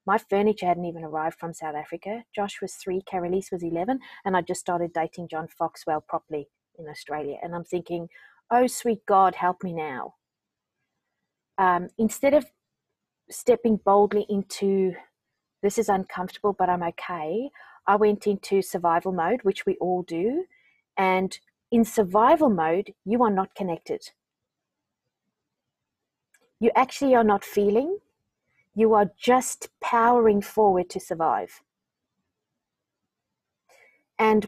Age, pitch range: 30-49, 180-240 Hz